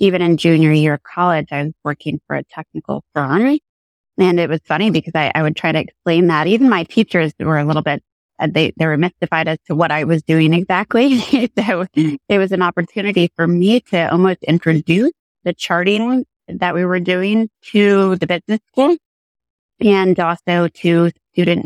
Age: 30-49